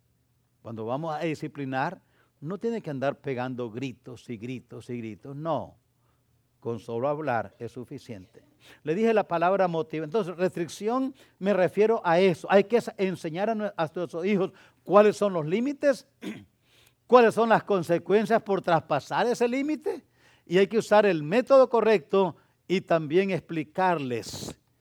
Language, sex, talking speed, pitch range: English, male, 145 wpm, 130-205 Hz